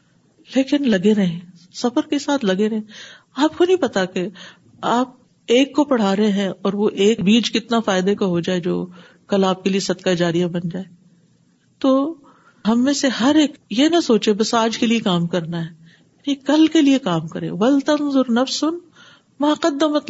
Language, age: Urdu, 50-69